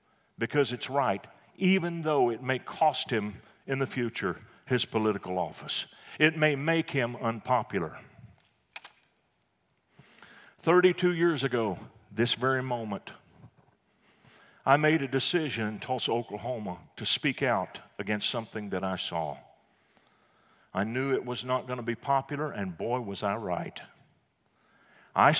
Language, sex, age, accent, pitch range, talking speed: English, male, 50-69, American, 115-165 Hz, 130 wpm